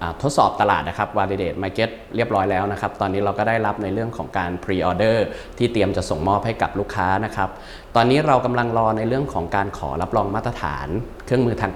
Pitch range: 90-115 Hz